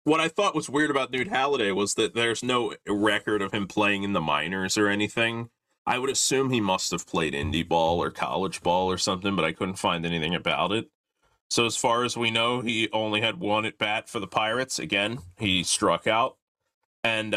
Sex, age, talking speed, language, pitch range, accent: male, 30-49, 215 wpm, English, 90-115 Hz, American